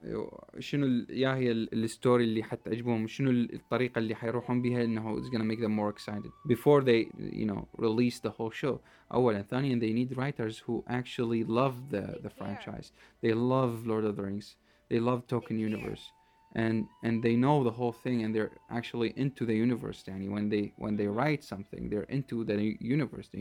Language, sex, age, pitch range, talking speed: Arabic, male, 20-39, 110-125 Hz, 150 wpm